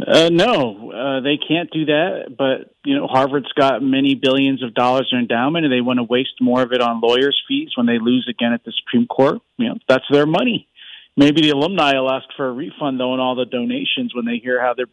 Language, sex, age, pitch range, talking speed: English, male, 50-69, 130-185 Hz, 240 wpm